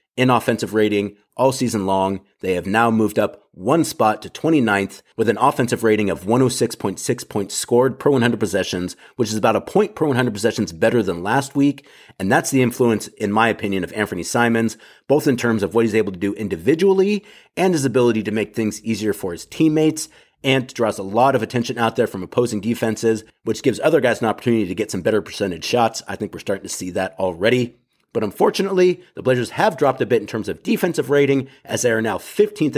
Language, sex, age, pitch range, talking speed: English, male, 30-49, 105-135 Hz, 215 wpm